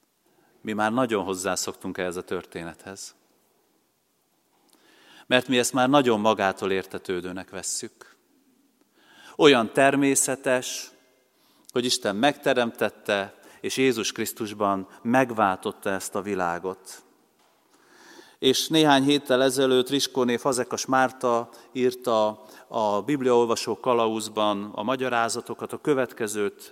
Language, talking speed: Hungarian, 95 wpm